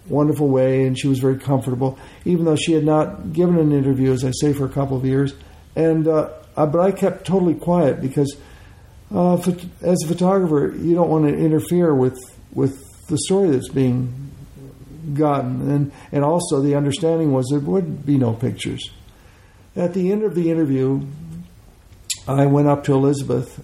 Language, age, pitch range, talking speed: English, 60-79, 130-155 Hz, 175 wpm